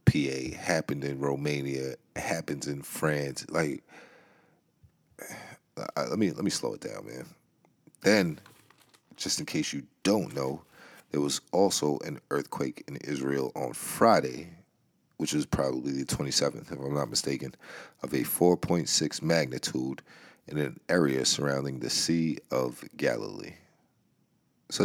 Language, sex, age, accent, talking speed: English, male, 40-59, American, 135 wpm